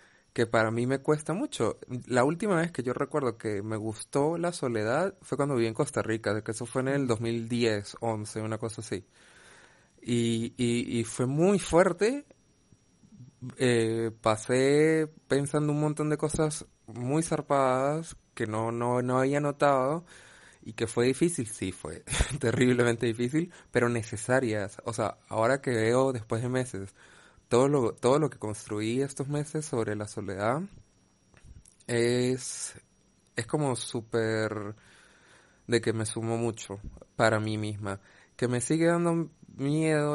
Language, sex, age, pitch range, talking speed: Spanish, male, 20-39, 110-145 Hz, 150 wpm